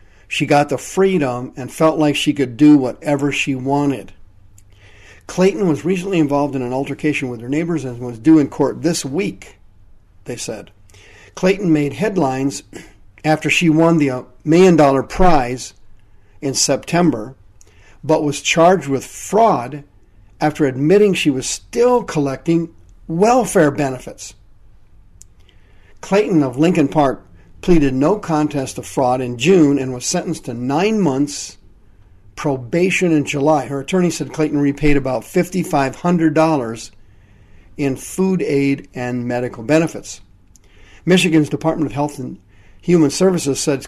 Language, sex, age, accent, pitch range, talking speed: English, male, 50-69, American, 105-160 Hz, 135 wpm